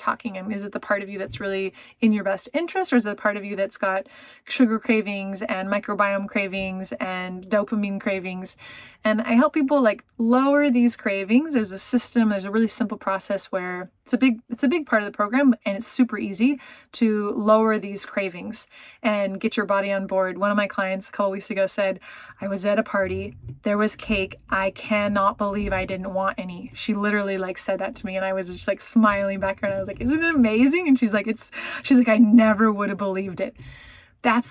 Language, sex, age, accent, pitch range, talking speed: English, female, 20-39, American, 195-225 Hz, 230 wpm